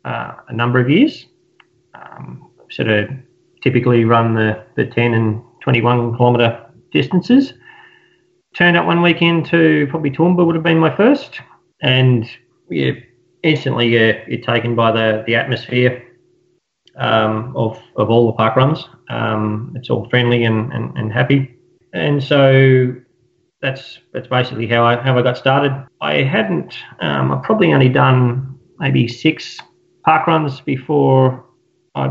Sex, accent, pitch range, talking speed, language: male, Australian, 120-145 Hz, 150 wpm, English